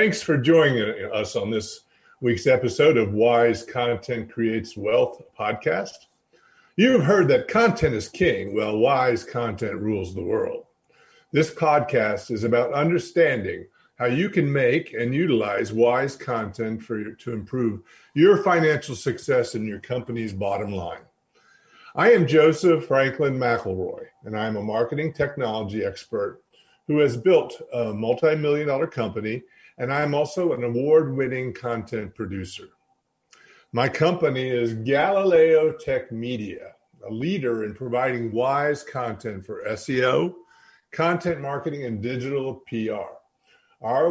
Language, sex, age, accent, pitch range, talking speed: English, male, 50-69, American, 115-155 Hz, 130 wpm